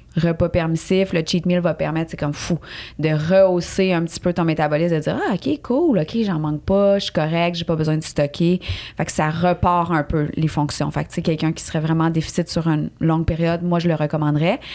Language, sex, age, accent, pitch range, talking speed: French, female, 30-49, Canadian, 160-190 Hz, 235 wpm